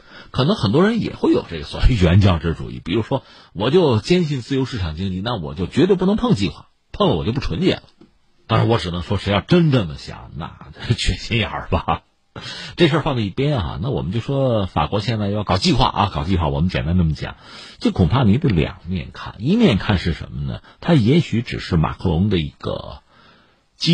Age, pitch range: 50-69, 90-135 Hz